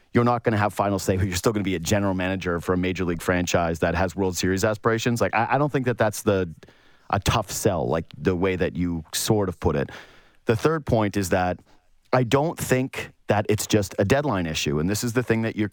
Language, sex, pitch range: English, male, 105-140 Hz